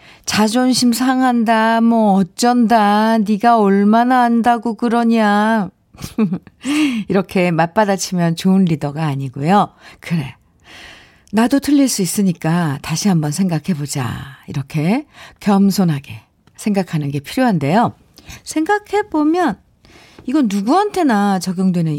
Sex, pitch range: female, 165-235 Hz